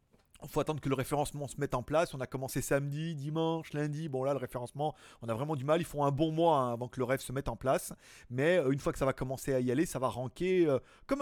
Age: 30-49